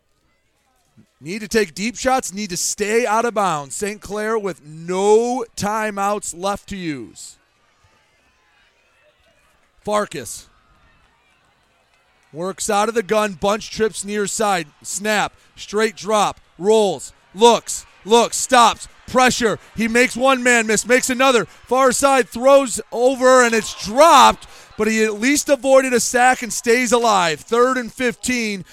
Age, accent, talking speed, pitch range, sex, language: 30-49, American, 135 wpm, 185-230 Hz, male, English